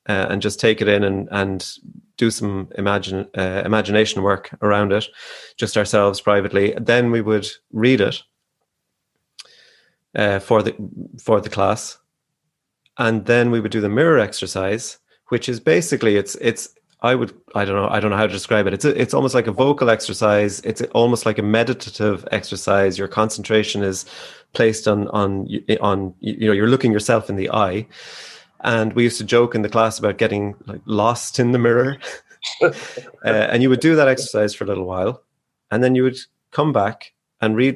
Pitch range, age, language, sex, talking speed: 100-115 Hz, 30-49, English, male, 185 wpm